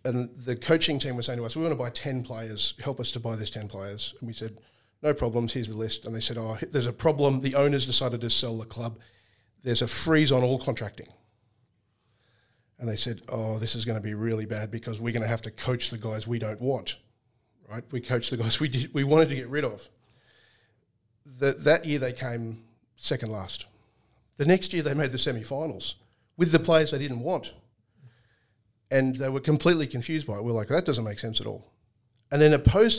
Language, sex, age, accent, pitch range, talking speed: English, male, 50-69, Australian, 115-135 Hz, 225 wpm